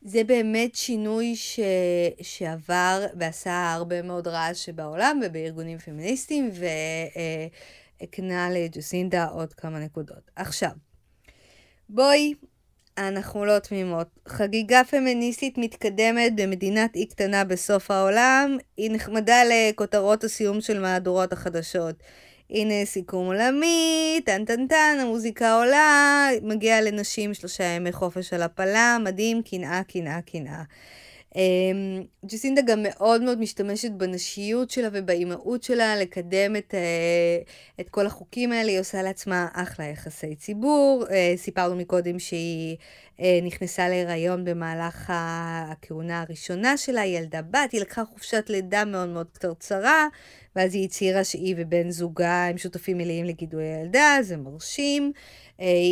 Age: 20-39